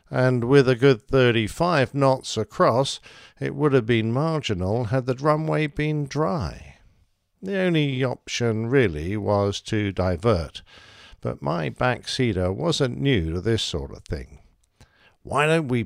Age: 50-69